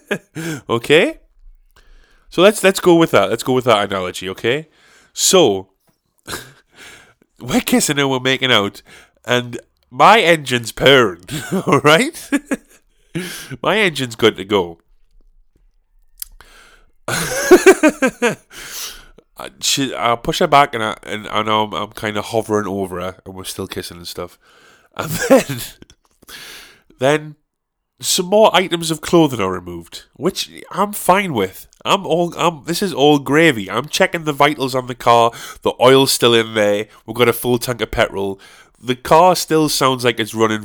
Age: 30-49